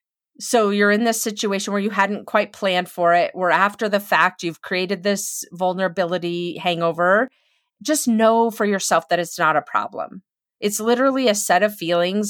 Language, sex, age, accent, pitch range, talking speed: English, female, 30-49, American, 180-235 Hz, 175 wpm